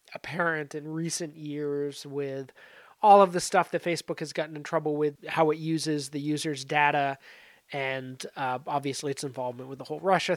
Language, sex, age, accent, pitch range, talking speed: English, male, 30-49, American, 145-170 Hz, 180 wpm